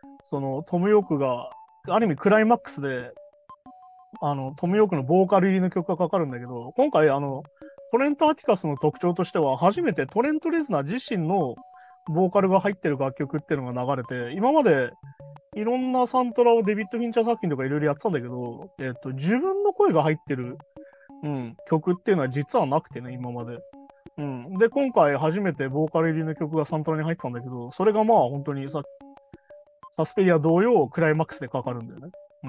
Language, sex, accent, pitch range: Japanese, male, native, 140-220 Hz